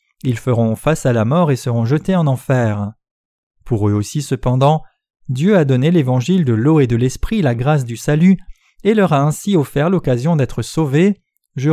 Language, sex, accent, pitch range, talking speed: French, male, French, 120-160 Hz, 190 wpm